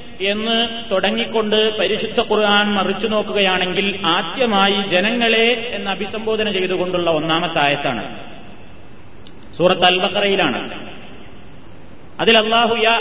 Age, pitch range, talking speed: 30-49, 190-225 Hz, 65 wpm